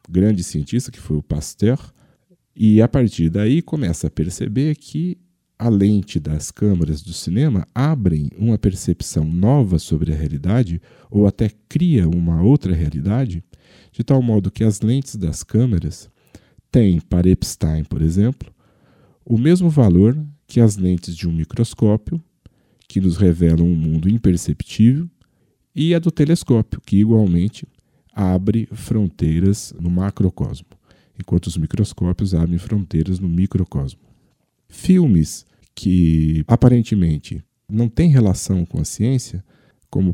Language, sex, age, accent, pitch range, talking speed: Portuguese, male, 50-69, Brazilian, 85-120 Hz, 130 wpm